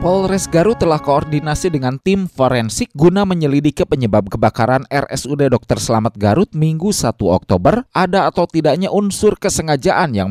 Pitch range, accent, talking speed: 110-165 Hz, native, 140 wpm